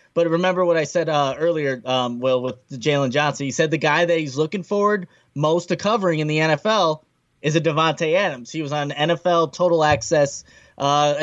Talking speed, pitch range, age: 200 wpm, 140-175 Hz, 20-39